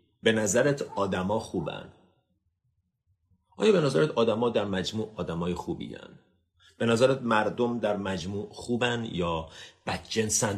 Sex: male